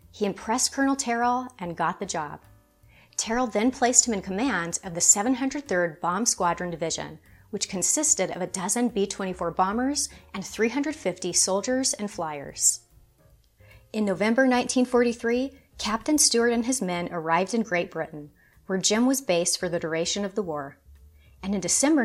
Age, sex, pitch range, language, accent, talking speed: 30-49, female, 160-230 Hz, English, American, 155 wpm